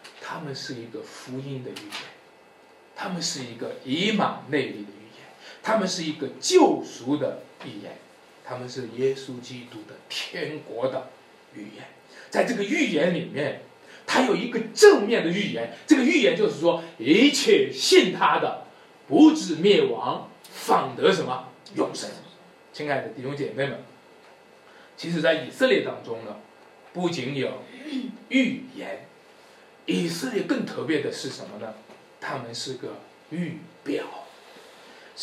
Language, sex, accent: Chinese, male, native